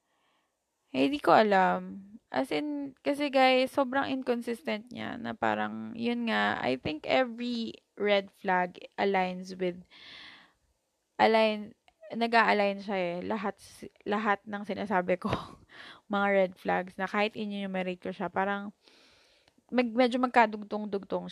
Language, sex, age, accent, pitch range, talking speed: Filipino, female, 20-39, native, 185-230 Hz, 120 wpm